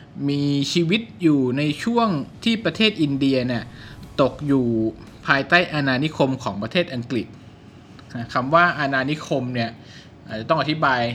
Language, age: Thai, 20-39